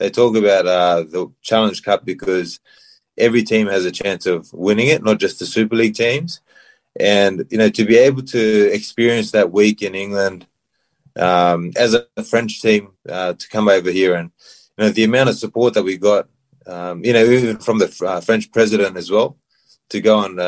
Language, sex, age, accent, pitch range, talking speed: English, male, 20-39, Australian, 95-115 Hz, 195 wpm